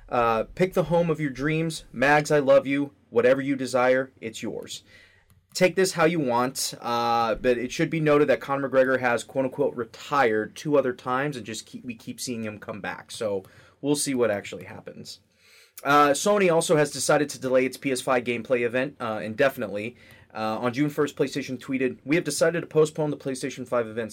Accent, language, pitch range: American, English, 115-145 Hz